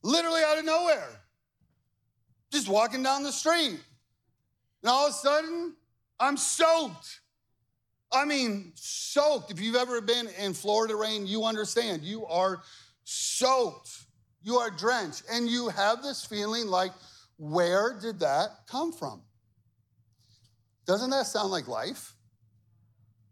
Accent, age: American, 40-59